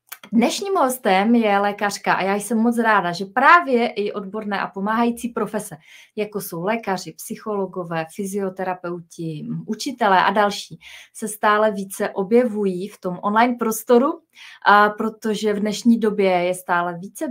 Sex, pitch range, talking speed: female, 190-220 Hz, 135 wpm